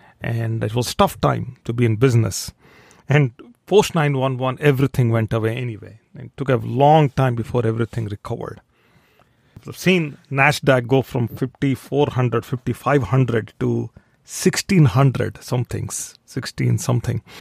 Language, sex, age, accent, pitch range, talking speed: English, male, 40-59, Indian, 115-145 Hz, 135 wpm